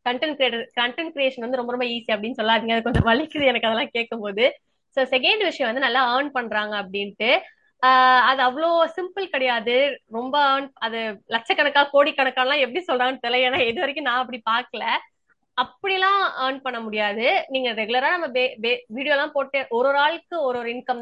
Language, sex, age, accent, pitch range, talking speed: Tamil, female, 20-39, native, 230-285 Hz, 180 wpm